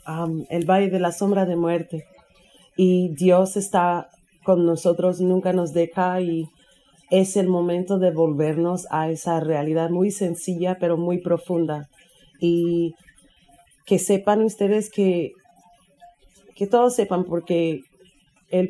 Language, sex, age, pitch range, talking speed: Spanish, female, 30-49, 165-195 Hz, 130 wpm